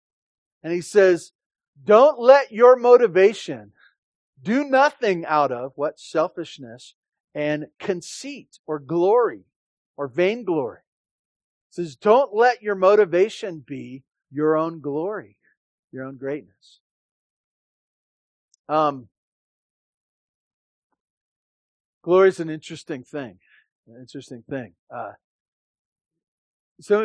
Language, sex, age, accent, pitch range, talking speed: English, male, 50-69, American, 135-175 Hz, 95 wpm